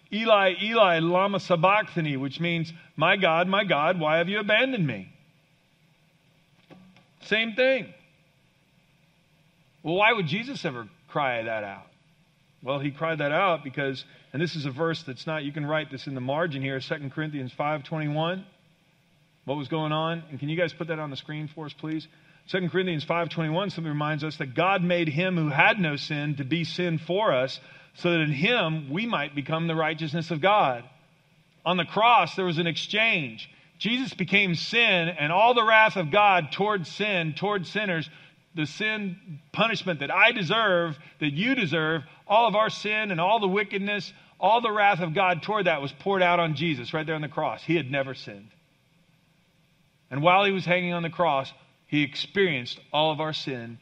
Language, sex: English, male